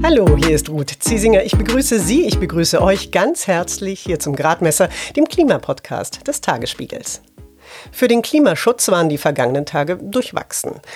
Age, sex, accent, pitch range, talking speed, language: 40-59, female, German, 155-235 Hz, 155 wpm, German